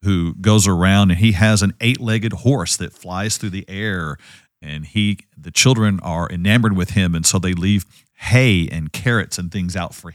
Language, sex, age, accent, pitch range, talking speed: English, male, 50-69, American, 90-120 Hz, 195 wpm